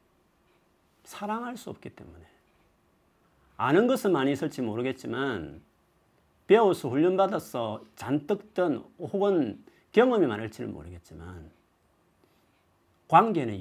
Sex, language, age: male, Korean, 40-59